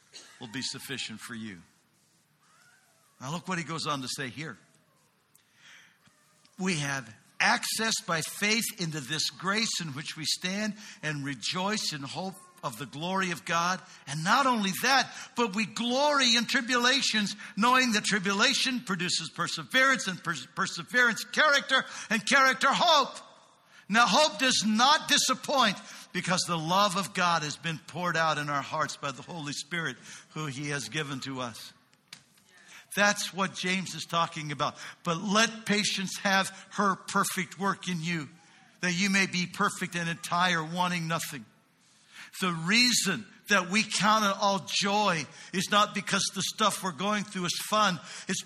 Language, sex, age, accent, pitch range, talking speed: English, male, 60-79, American, 165-215 Hz, 155 wpm